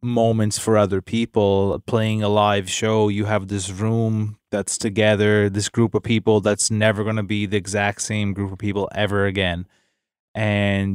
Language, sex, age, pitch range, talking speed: English, male, 20-39, 100-110 Hz, 175 wpm